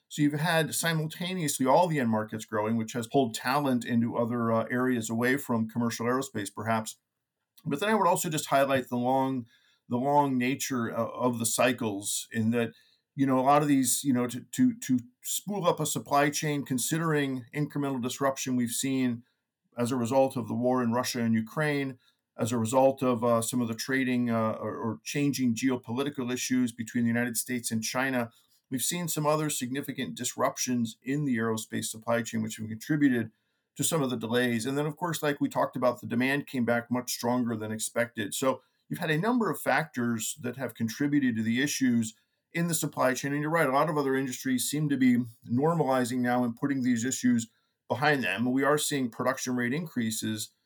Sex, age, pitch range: male, 50-69, 115-140 Hz